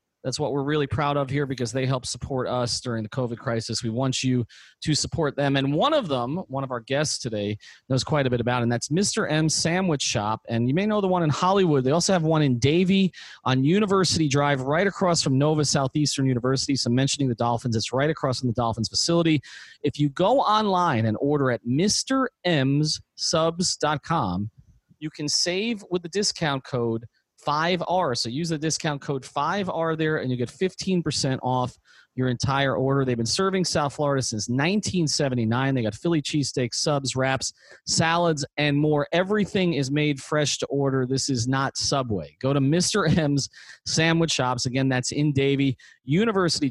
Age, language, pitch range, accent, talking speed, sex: 30-49, English, 125-160 Hz, American, 185 wpm, male